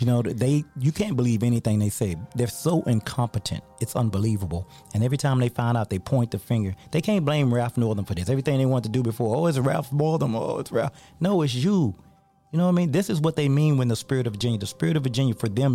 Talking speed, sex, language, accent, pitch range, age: 260 wpm, male, English, American, 115-150 Hz, 30-49